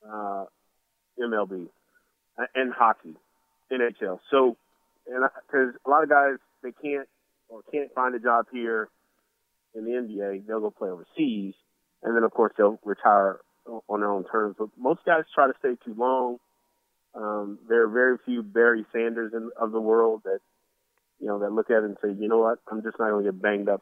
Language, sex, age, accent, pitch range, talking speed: English, male, 30-49, American, 100-120 Hz, 190 wpm